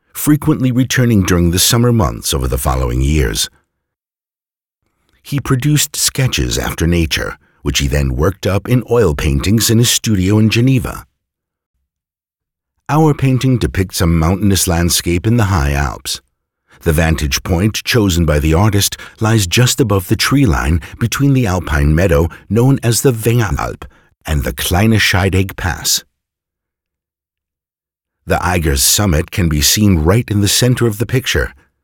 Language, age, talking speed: English, 60-79, 145 wpm